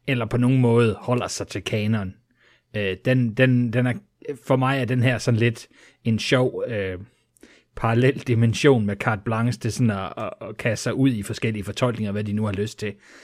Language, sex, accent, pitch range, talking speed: English, male, Danish, 110-130 Hz, 205 wpm